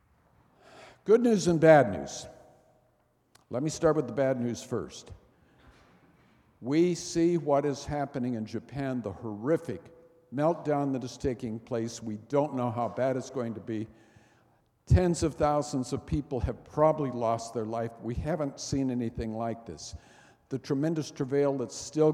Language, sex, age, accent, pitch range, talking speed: English, male, 60-79, American, 120-150 Hz, 155 wpm